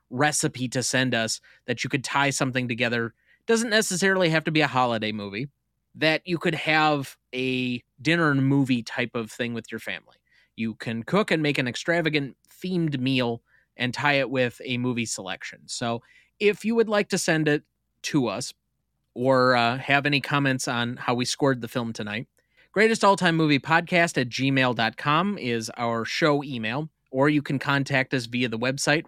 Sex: male